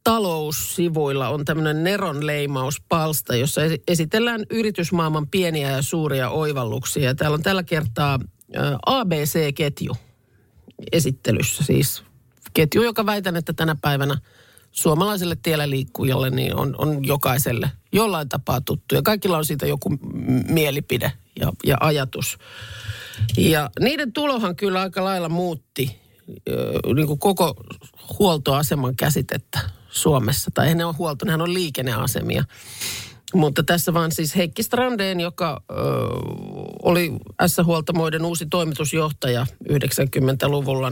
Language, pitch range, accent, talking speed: Finnish, 130-175 Hz, native, 115 wpm